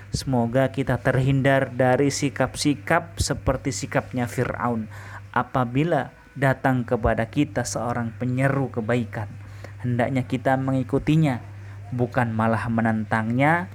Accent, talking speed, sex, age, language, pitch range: native, 90 wpm, male, 20-39, Indonesian, 110-130 Hz